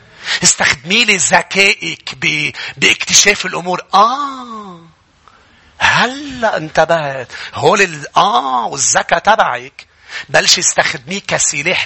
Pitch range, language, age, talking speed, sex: 115-165 Hz, English, 40-59, 75 wpm, male